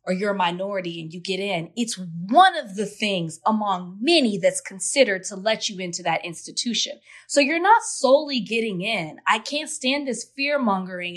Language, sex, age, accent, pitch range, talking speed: English, female, 20-39, American, 185-250 Hz, 185 wpm